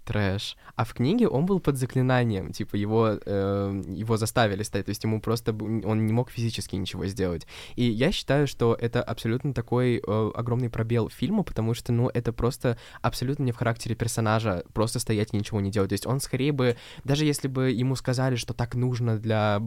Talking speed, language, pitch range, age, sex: 200 wpm, Russian, 110-130 Hz, 20-39, male